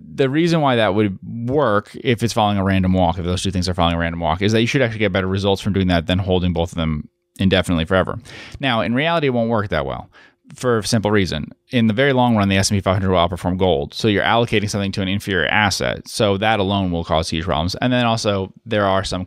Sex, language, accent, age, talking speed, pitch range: male, English, American, 30-49, 255 wpm, 90-115 Hz